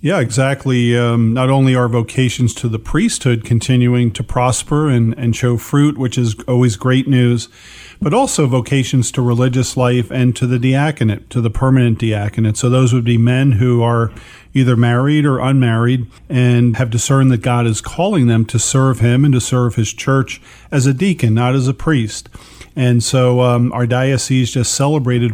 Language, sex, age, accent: English, male, 40-59, American